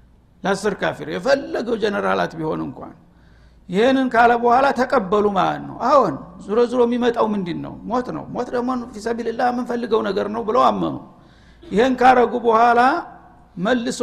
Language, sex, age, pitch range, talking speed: Amharic, male, 60-79, 205-240 Hz, 60 wpm